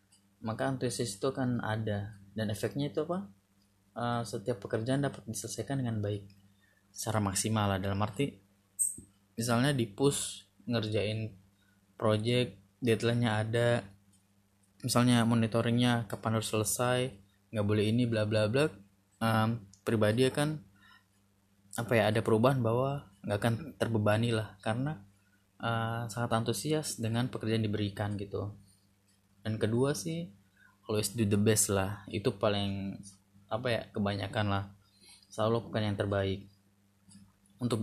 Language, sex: Indonesian, male